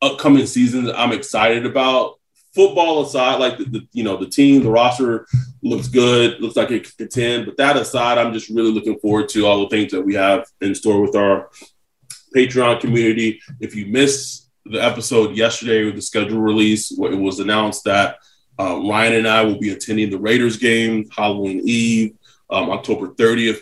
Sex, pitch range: male, 110-130 Hz